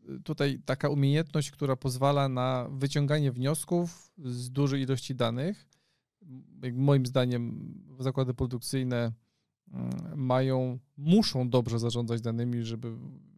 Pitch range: 125-145 Hz